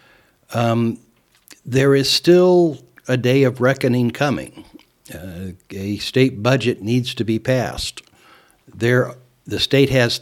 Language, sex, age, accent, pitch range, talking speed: English, male, 60-79, American, 105-125 Hz, 125 wpm